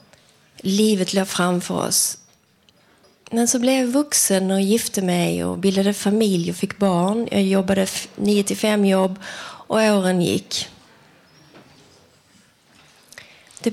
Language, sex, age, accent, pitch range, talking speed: Swedish, female, 30-49, native, 190-240 Hz, 120 wpm